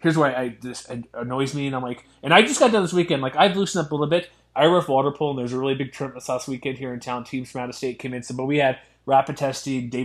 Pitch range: 130-170 Hz